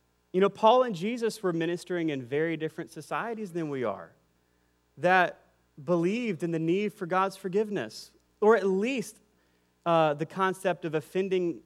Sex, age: male, 30-49